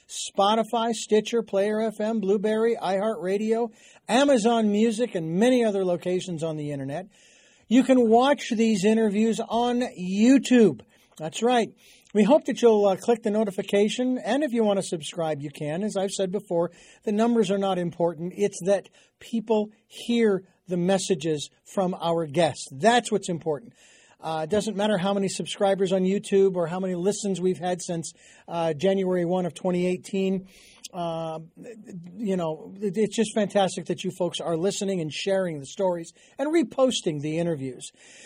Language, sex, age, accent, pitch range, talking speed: English, male, 50-69, American, 180-220 Hz, 155 wpm